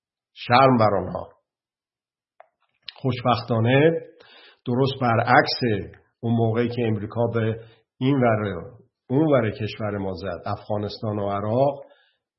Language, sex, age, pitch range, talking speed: Persian, male, 50-69, 105-125 Hz, 100 wpm